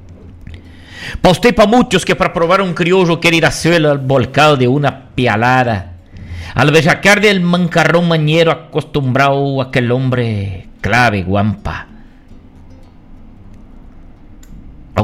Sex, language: male, Portuguese